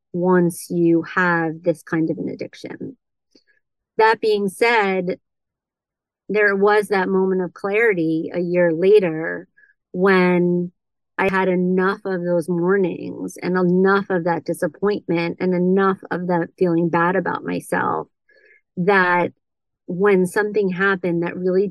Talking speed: 125 wpm